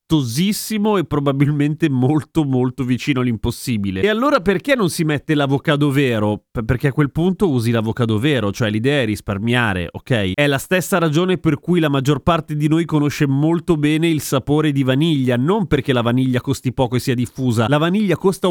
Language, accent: Italian, native